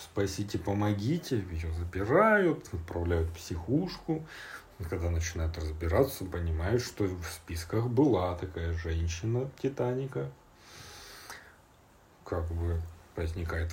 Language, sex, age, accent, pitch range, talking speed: Russian, male, 40-59, native, 85-120 Hz, 95 wpm